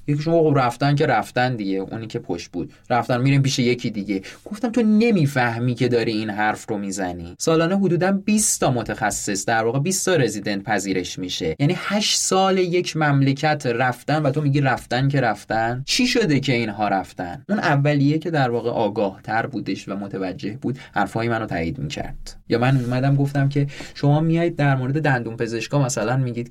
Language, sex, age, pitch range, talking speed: Persian, male, 20-39, 105-145 Hz, 185 wpm